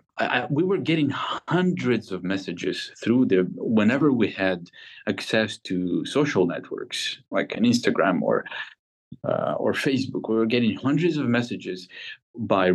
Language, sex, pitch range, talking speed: English, male, 90-110 Hz, 140 wpm